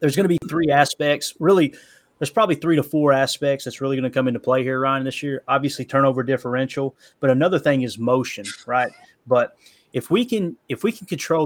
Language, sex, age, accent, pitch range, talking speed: English, male, 30-49, American, 120-145 Hz, 215 wpm